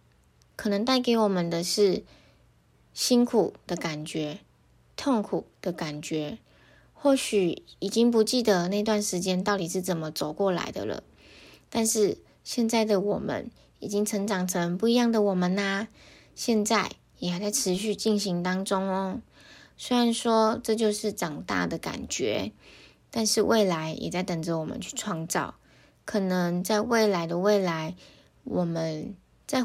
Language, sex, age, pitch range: Chinese, female, 20-39, 180-215 Hz